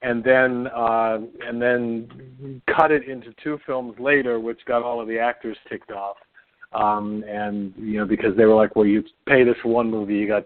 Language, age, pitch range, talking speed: English, 50-69, 110-130 Hz, 205 wpm